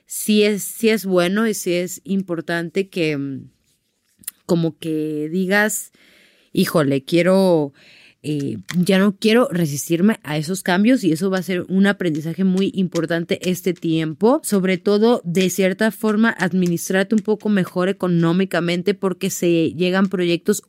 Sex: female